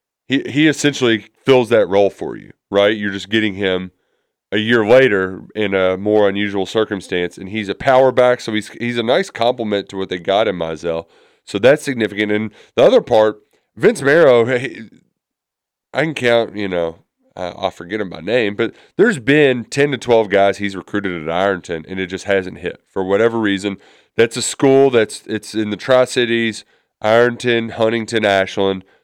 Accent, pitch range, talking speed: American, 95-125 Hz, 185 wpm